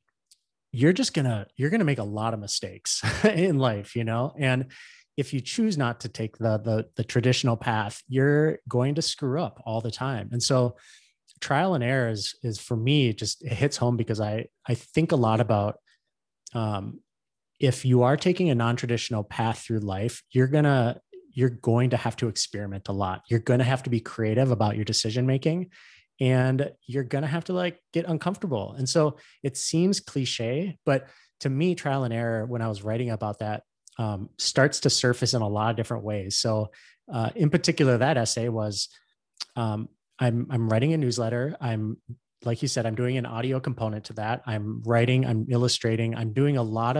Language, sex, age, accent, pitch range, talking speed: English, male, 30-49, American, 115-135 Hz, 195 wpm